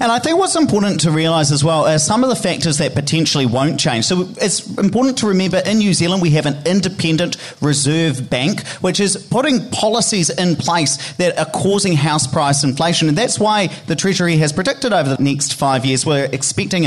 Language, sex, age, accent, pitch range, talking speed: English, male, 30-49, Australian, 140-180 Hz, 205 wpm